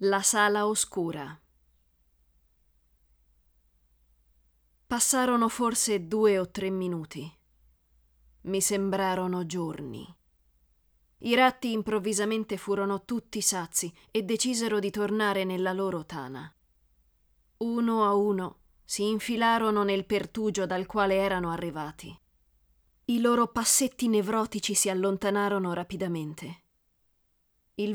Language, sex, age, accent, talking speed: Italian, female, 30-49, native, 95 wpm